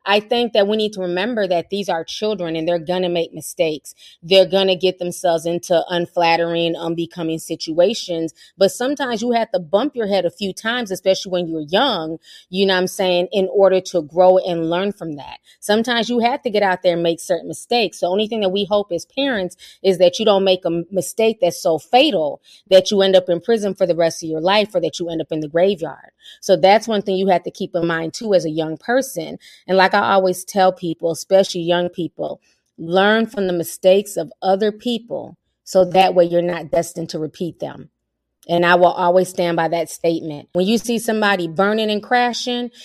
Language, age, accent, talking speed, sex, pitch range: English, 30-49, American, 220 wpm, female, 170-205 Hz